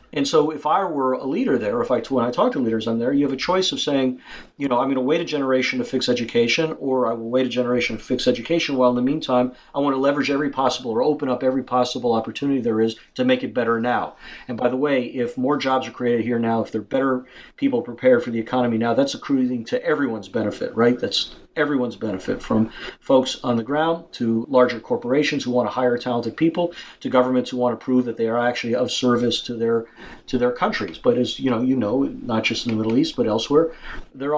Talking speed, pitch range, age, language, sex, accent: 250 wpm, 115-140 Hz, 50-69, English, male, American